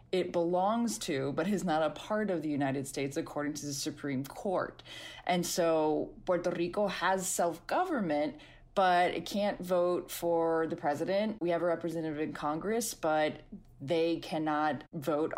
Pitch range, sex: 150-180 Hz, female